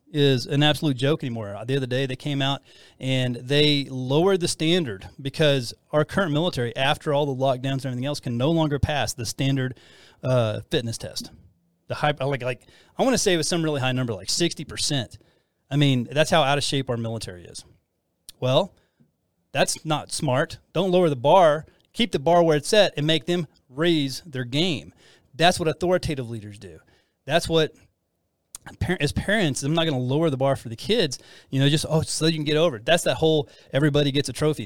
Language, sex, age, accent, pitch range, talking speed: English, male, 30-49, American, 125-160 Hz, 205 wpm